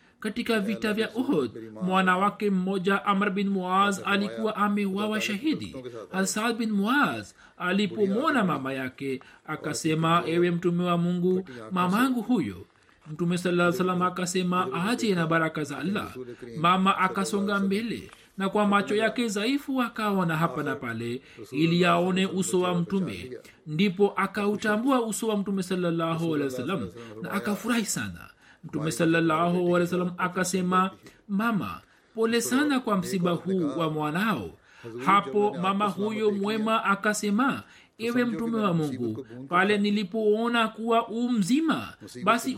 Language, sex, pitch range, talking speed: Swahili, male, 175-225 Hz, 130 wpm